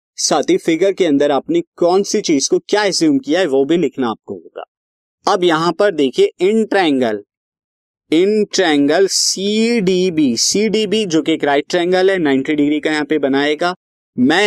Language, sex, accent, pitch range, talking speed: Hindi, male, native, 140-215 Hz, 175 wpm